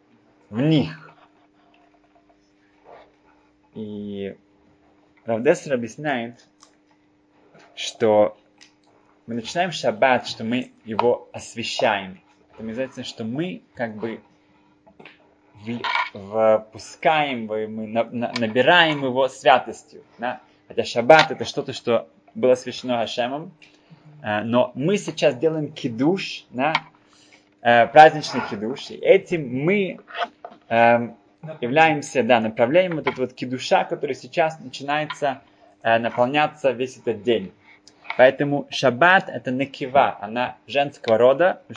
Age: 20-39